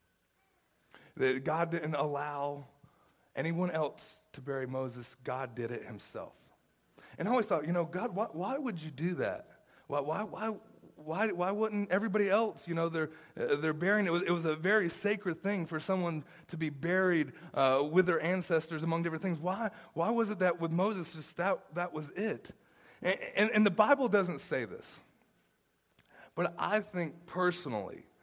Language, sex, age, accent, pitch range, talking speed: English, male, 30-49, American, 160-205 Hz, 175 wpm